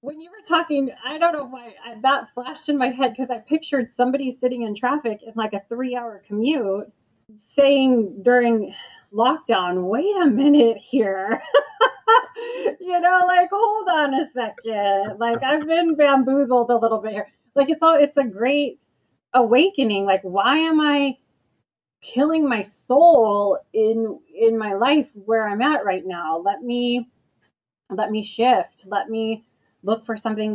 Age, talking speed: 30-49, 155 wpm